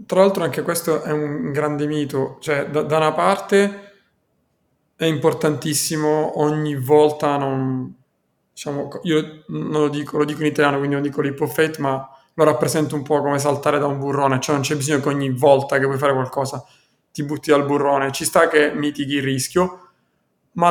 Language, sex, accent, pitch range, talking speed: Italian, male, native, 140-155 Hz, 185 wpm